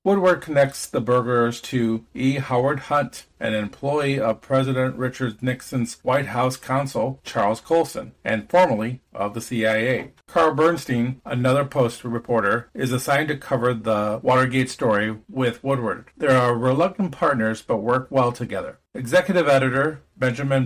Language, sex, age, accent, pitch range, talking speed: English, male, 50-69, American, 120-140 Hz, 140 wpm